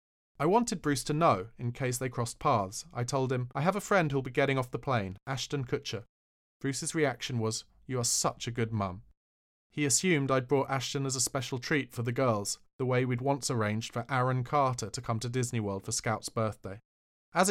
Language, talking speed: English, 215 wpm